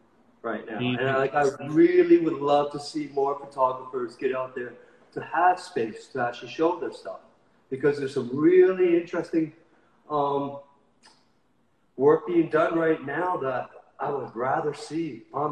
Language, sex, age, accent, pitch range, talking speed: English, male, 40-59, American, 120-165 Hz, 150 wpm